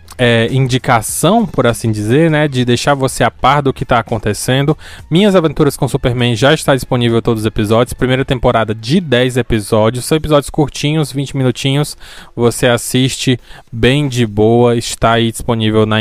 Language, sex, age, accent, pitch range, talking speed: Portuguese, male, 20-39, Brazilian, 115-150 Hz, 170 wpm